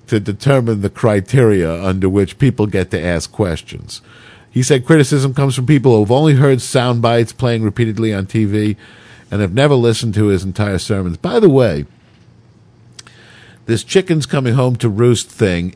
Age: 50-69